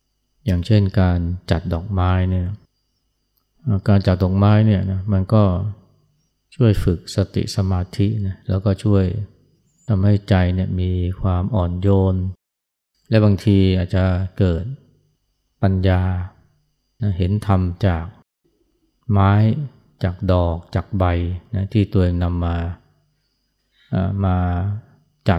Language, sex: Thai, male